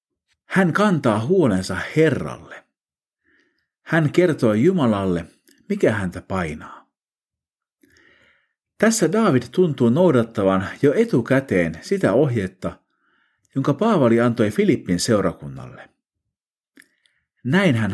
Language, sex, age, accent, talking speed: Finnish, male, 50-69, native, 80 wpm